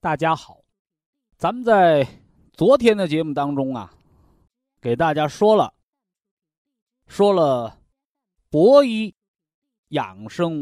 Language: Chinese